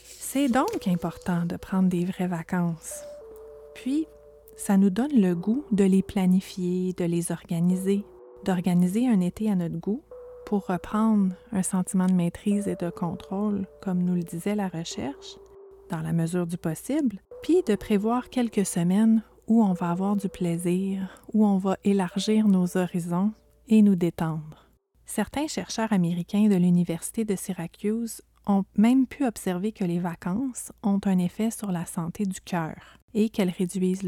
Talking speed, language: 160 wpm, French